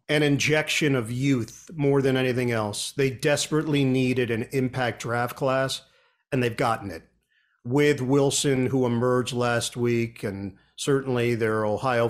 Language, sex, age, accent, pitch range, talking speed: English, male, 50-69, American, 120-140 Hz, 150 wpm